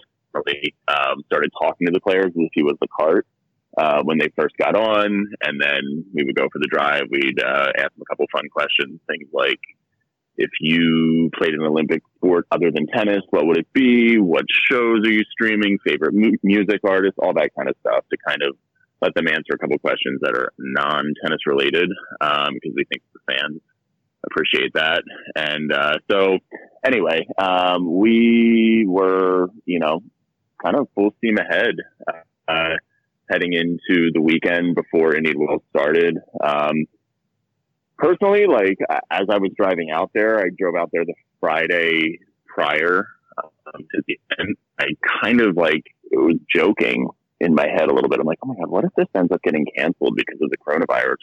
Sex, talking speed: male, 180 wpm